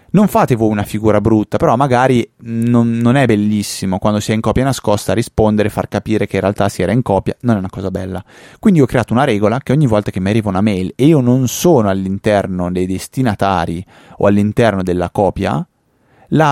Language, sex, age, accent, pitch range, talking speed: Italian, male, 30-49, native, 100-125 Hz, 205 wpm